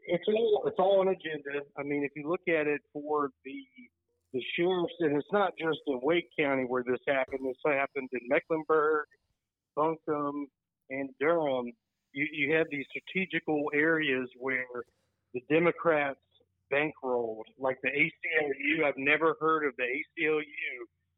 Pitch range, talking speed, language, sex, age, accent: 125-155 Hz, 145 wpm, English, male, 40-59, American